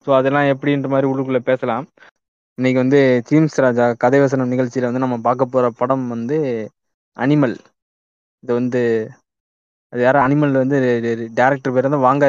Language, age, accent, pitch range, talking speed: Tamil, 20-39, native, 120-140 Hz, 145 wpm